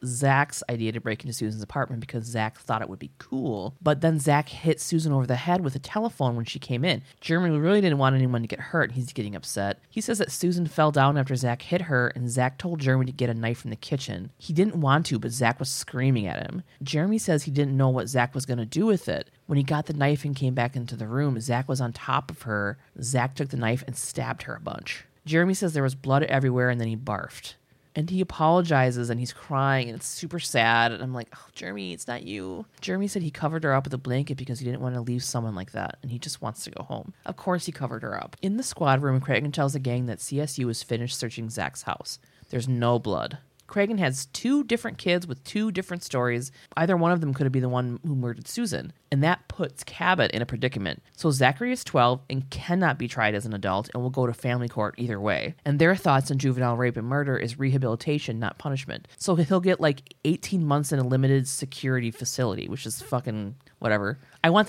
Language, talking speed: English, 245 wpm